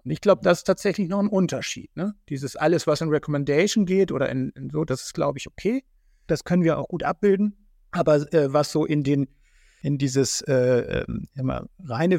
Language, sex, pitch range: German, male, 130-165 Hz